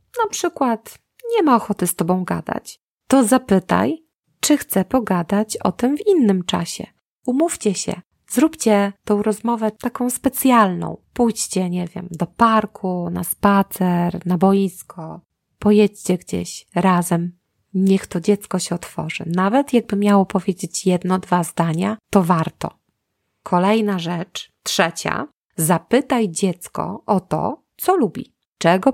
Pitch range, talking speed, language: 180-240 Hz, 125 wpm, Polish